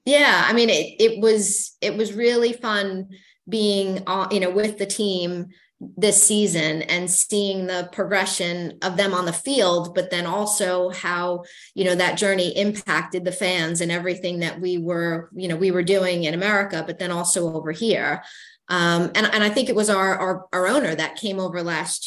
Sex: female